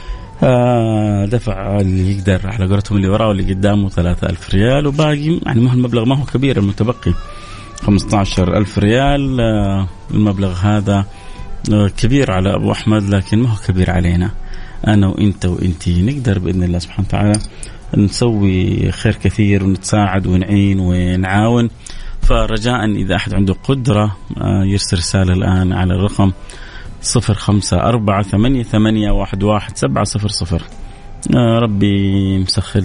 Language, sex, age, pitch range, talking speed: Arabic, male, 30-49, 95-110 Hz, 125 wpm